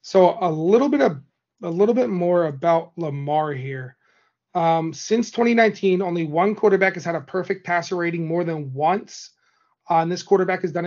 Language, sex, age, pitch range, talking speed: English, male, 30-49, 160-190 Hz, 180 wpm